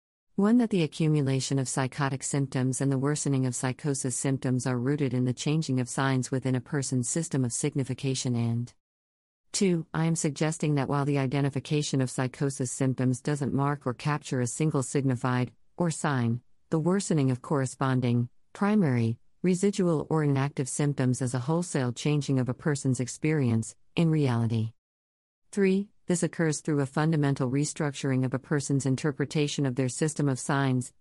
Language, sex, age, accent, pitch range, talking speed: English, female, 50-69, American, 130-155 Hz, 160 wpm